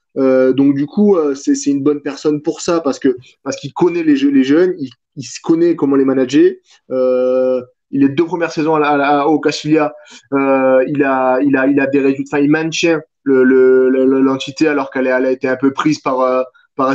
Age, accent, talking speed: 20-39, French, 230 wpm